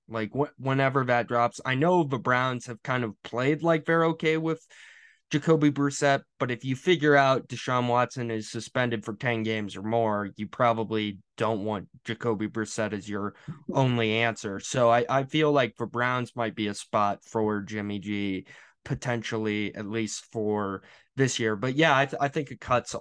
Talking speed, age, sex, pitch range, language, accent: 180 wpm, 20-39, male, 115-150 Hz, English, American